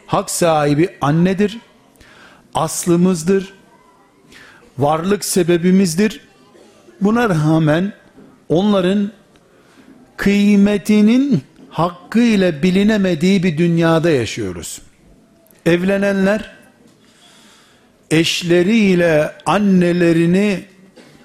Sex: male